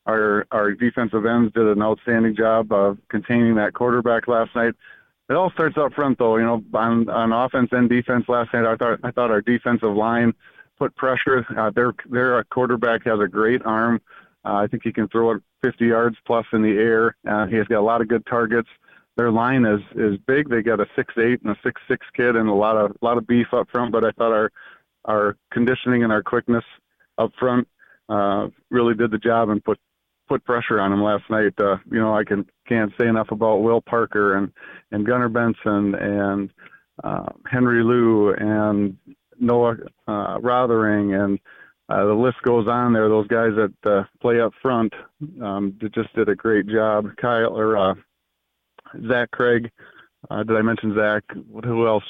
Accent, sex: American, male